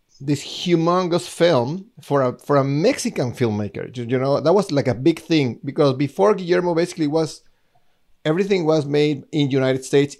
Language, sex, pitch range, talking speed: English, male, 135-170 Hz, 165 wpm